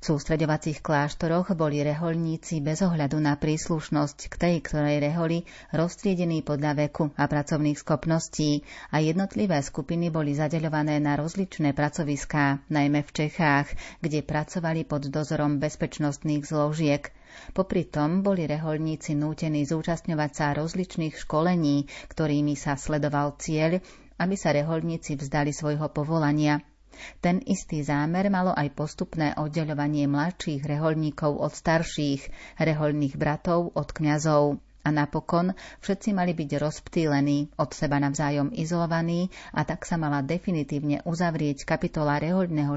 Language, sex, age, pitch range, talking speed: Slovak, female, 30-49, 145-165 Hz, 125 wpm